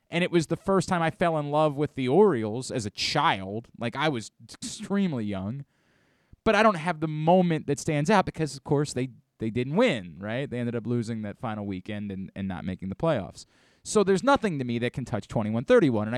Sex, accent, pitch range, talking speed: male, American, 110-150 Hz, 225 wpm